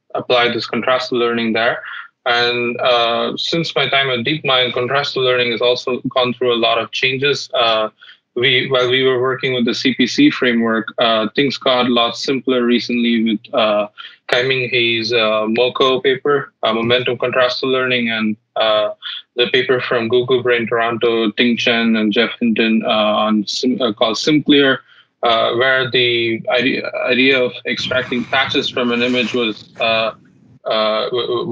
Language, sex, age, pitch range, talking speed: English, male, 20-39, 115-130 Hz, 160 wpm